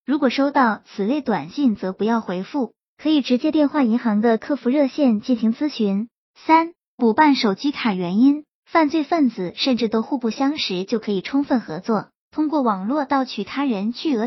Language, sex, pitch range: Chinese, male, 220-290 Hz